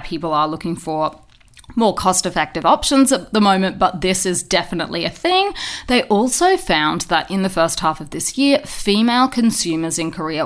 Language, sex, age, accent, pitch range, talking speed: English, female, 30-49, Australian, 165-225 Hz, 185 wpm